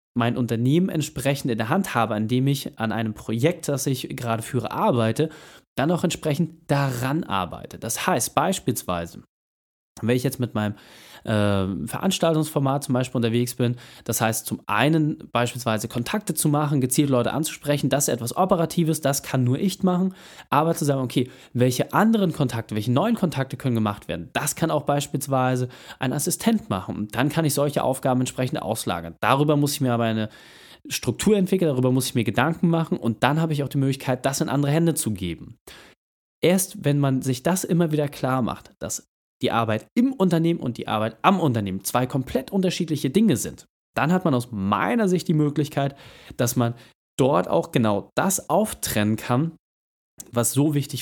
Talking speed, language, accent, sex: 180 wpm, German, German, male